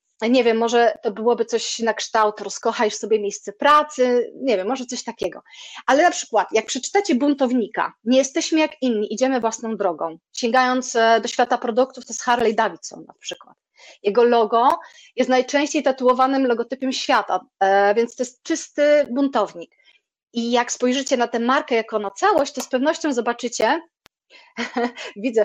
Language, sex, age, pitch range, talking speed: Polish, female, 30-49, 225-280 Hz, 160 wpm